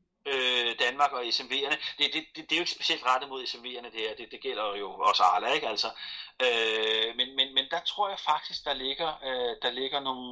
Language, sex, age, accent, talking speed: Danish, male, 30-49, native, 225 wpm